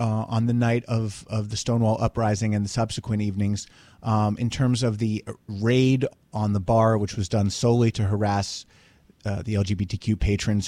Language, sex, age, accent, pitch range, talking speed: English, male, 30-49, American, 100-130 Hz, 180 wpm